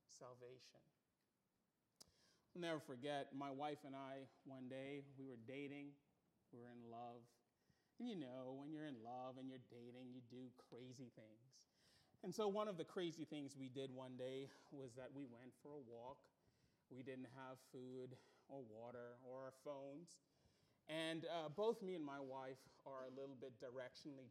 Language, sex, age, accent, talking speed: English, male, 30-49, American, 175 wpm